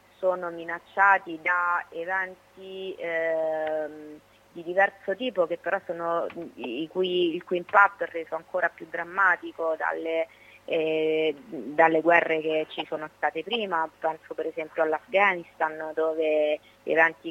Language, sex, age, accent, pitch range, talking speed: Italian, female, 20-39, native, 155-175 Hz, 125 wpm